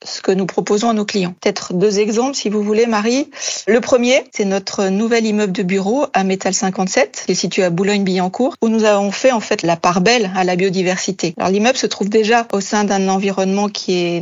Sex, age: female, 40-59